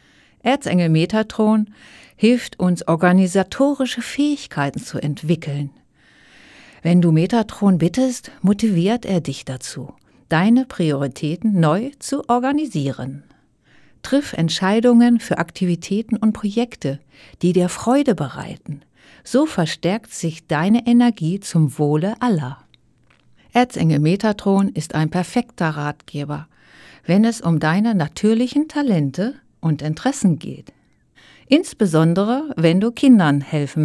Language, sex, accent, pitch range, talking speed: German, female, German, 155-230 Hz, 105 wpm